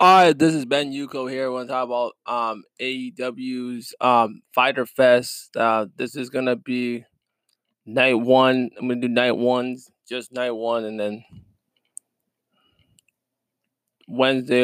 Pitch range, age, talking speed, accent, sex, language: 110-130 Hz, 20-39, 140 wpm, American, male, English